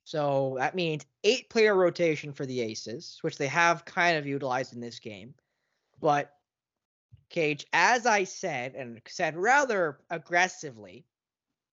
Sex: male